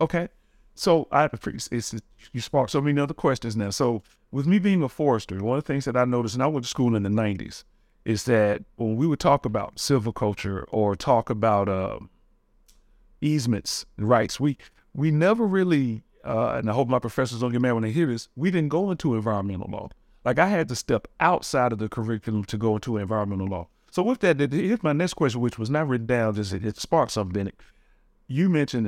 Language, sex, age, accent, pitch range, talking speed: English, male, 40-59, American, 110-145 Hz, 220 wpm